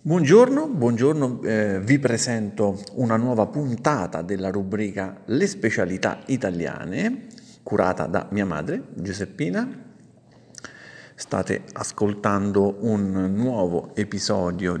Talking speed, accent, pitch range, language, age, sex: 95 wpm, native, 95-115 Hz, Italian, 50-69, male